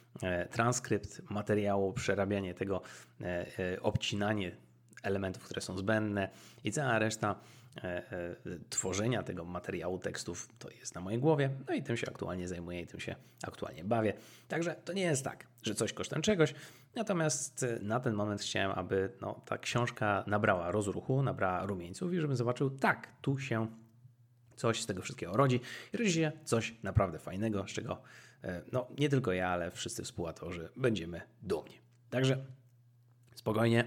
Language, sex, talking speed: Polish, male, 145 wpm